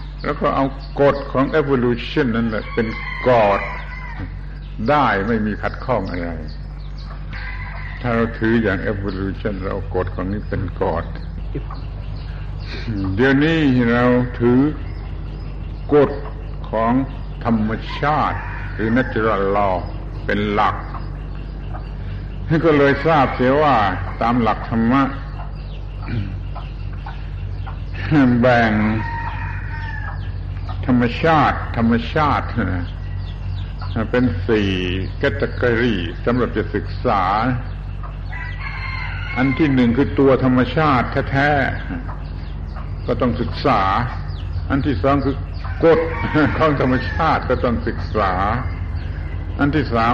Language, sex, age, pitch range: Thai, male, 70-89, 90-125 Hz